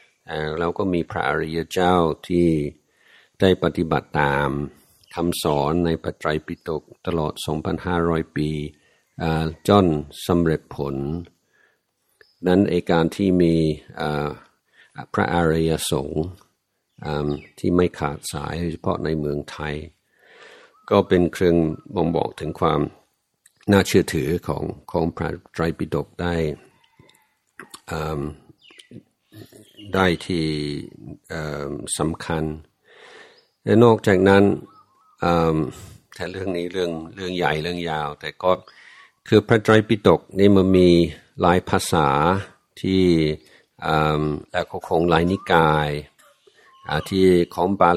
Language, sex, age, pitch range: Thai, male, 60-79, 75-90 Hz